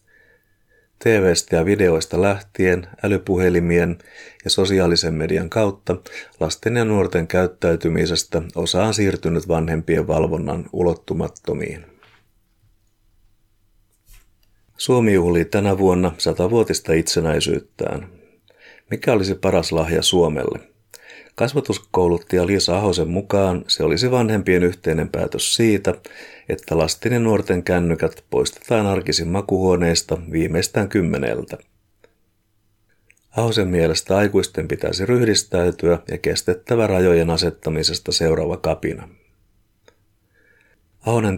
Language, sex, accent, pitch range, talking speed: Finnish, male, native, 85-105 Hz, 90 wpm